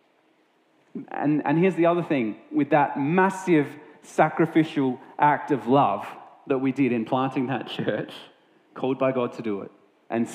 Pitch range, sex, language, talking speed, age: 120-190 Hz, male, English, 155 wpm, 30-49